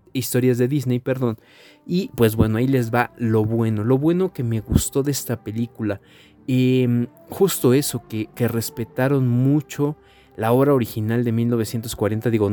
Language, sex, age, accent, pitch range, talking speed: Spanish, male, 20-39, Mexican, 110-125 Hz, 160 wpm